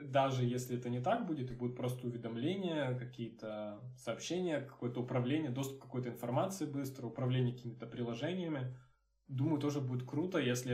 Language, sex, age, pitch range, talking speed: Russian, male, 20-39, 120-140 Hz, 150 wpm